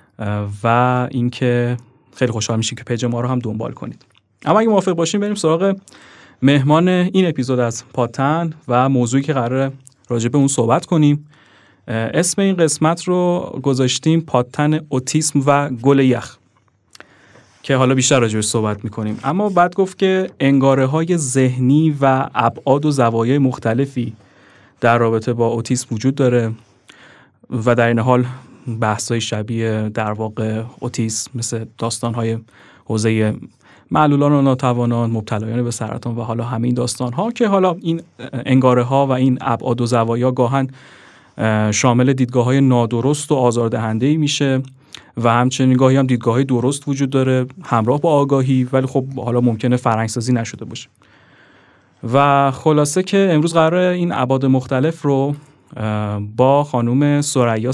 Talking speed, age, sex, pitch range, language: 140 wpm, 30-49, male, 115-140 Hz, Persian